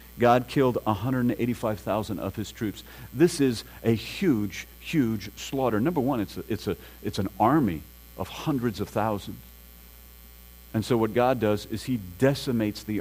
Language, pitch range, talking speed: English, 90-125 Hz, 155 wpm